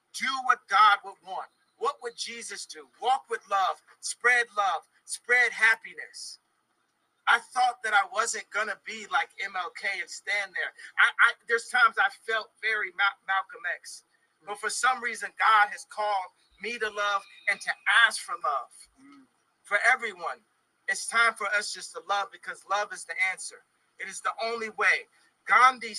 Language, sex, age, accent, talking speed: English, male, 40-59, American, 165 wpm